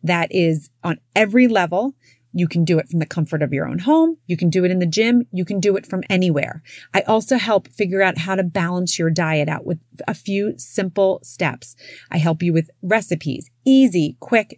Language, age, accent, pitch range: English, 30-49, American, 165-215 Hz